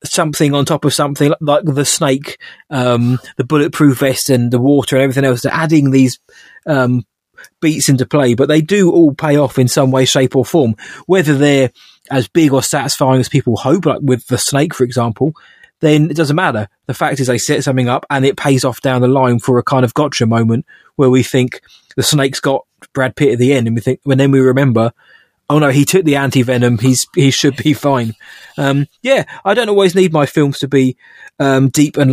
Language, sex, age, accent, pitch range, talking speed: English, male, 20-39, British, 130-150 Hz, 225 wpm